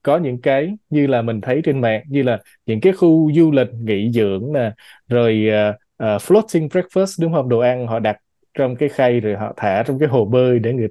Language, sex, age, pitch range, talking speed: Vietnamese, male, 20-39, 120-165 Hz, 225 wpm